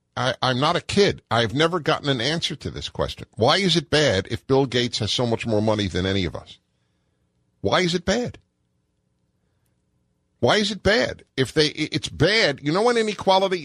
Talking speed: 200 wpm